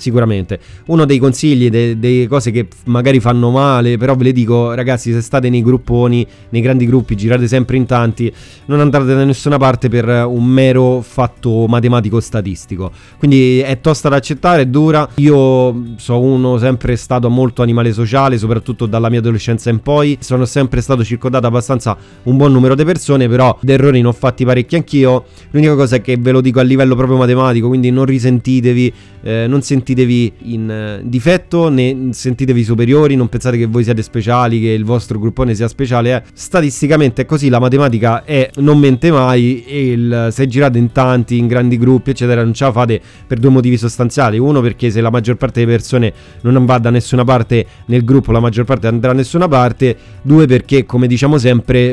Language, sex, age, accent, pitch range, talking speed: Italian, male, 20-39, native, 120-130 Hz, 190 wpm